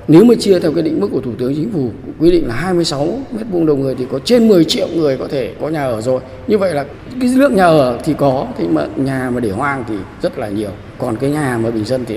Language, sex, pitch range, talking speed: Vietnamese, male, 115-155 Hz, 280 wpm